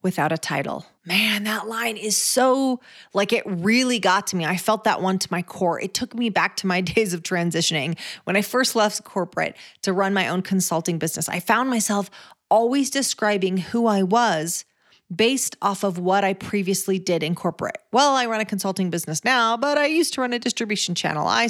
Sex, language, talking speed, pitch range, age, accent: female, English, 205 wpm, 190-235 Hz, 30-49, American